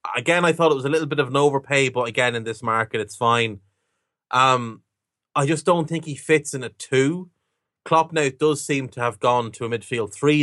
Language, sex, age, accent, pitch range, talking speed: English, male, 30-49, Irish, 110-135 Hz, 230 wpm